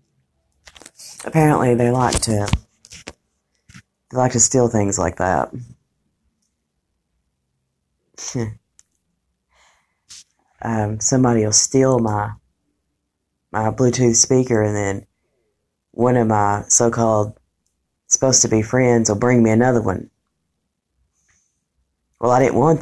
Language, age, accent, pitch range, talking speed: English, 30-49, American, 85-115 Hz, 100 wpm